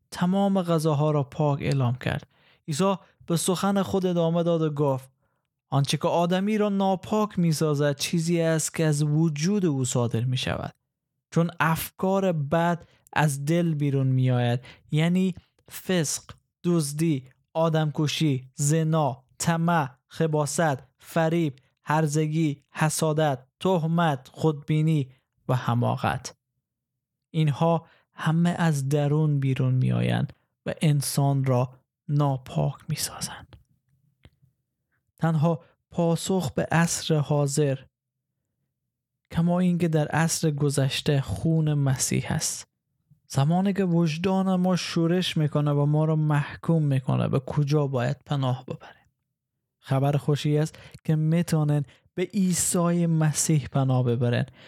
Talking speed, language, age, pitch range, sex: 110 wpm, Persian, 20-39, 135-165 Hz, male